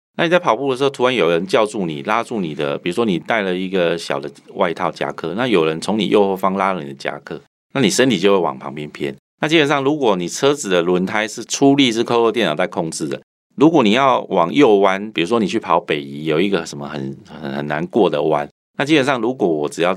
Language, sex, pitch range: Chinese, male, 85-125 Hz